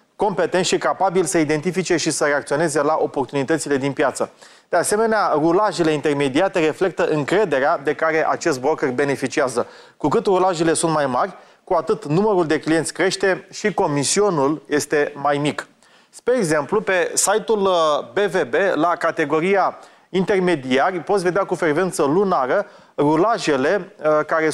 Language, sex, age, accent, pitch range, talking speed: Romanian, male, 30-49, native, 150-185 Hz, 135 wpm